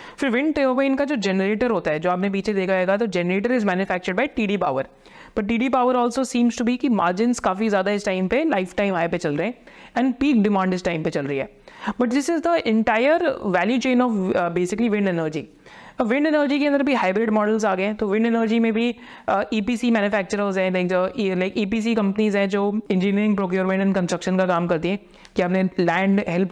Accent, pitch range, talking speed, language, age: native, 195-240 Hz, 220 wpm, Hindi, 30-49